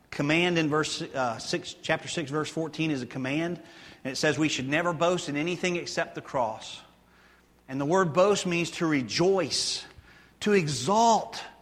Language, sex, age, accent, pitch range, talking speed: English, male, 40-59, American, 135-205 Hz, 170 wpm